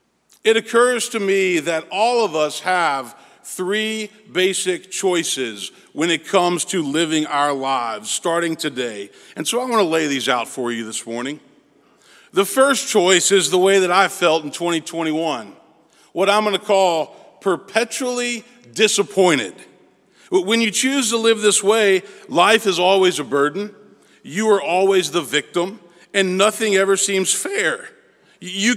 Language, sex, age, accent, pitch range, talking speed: English, male, 50-69, American, 170-220 Hz, 150 wpm